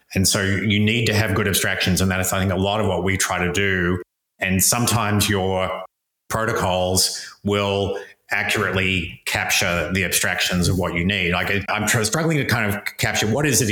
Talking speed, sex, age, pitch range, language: 195 wpm, male, 30-49, 95-110 Hz, English